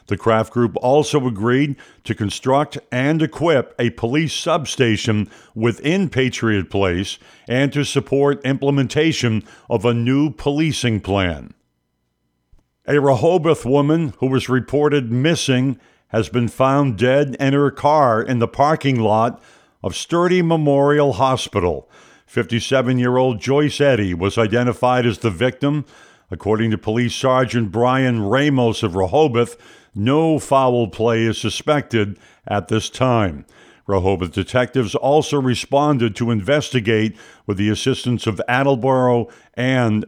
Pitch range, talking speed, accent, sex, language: 110-140 Hz, 125 wpm, American, male, English